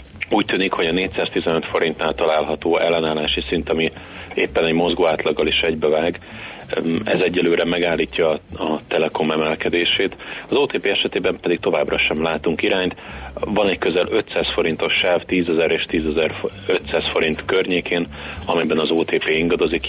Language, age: Hungarian, 30-49